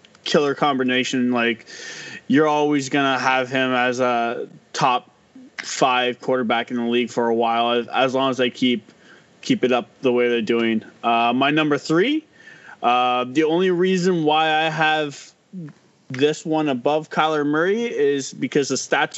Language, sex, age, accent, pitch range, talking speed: English, male, 20-39, American, 125-155 Hz, 160 wpm